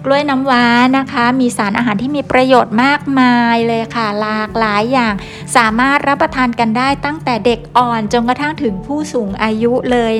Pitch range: 220-260 Hz